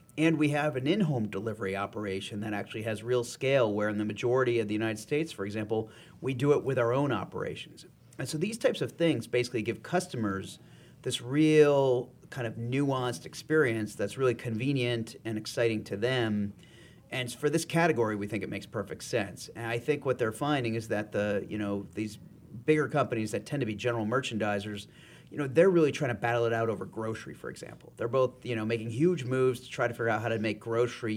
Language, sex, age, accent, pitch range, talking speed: English, male, 40-59, American, 110-140 Hz, 210 wpm